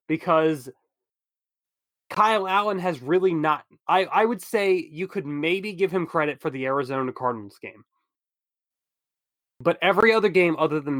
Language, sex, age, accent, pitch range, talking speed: English, male, 20-39, American, 140-185 Hz, 145 wpm